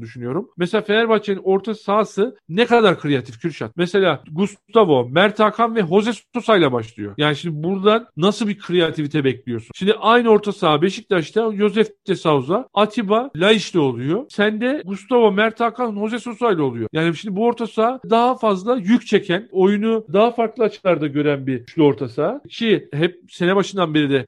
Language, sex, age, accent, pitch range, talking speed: Turkish, male, 50-69, native, 150-215 Hz, 170 wpm